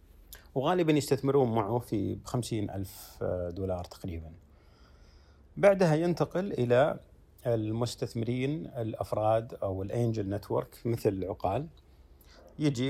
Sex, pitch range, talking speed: male, 95-135 Hz, 90 wpm